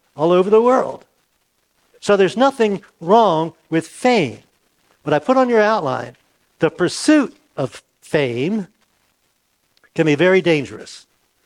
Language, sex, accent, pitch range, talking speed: English, male, American, 150-205 Hz, 125 wpm